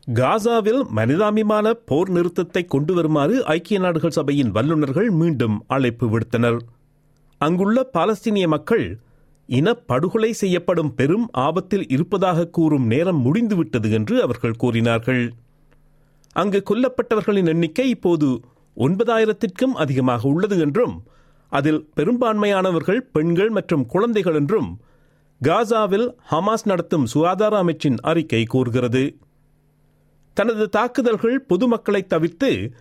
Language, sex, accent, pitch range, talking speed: Tamil, male, native, 145-220 Hz, 95 wpm